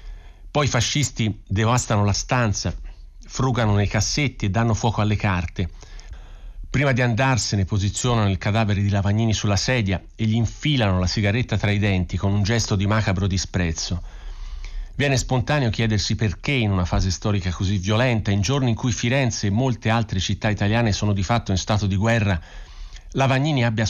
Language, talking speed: Italian, 170 wpm